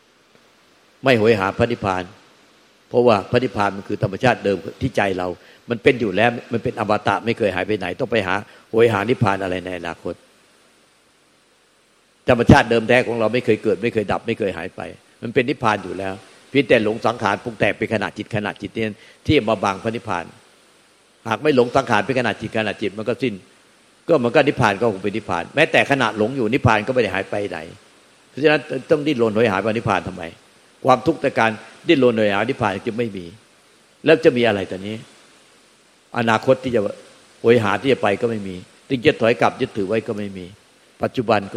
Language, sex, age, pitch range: Thai, male, 60-79, 100-120 Hz